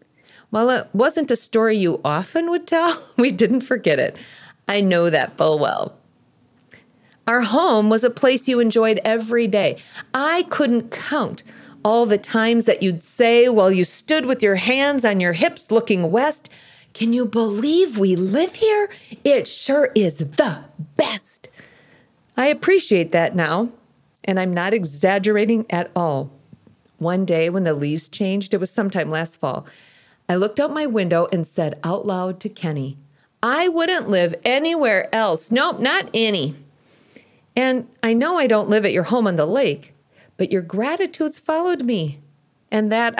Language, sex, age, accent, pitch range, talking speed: English, female, 40-59, American, 190-275 Hz, 165 wpm